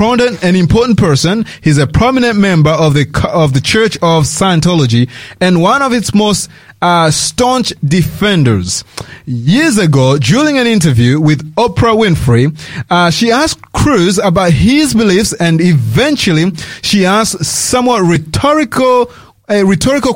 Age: 30-49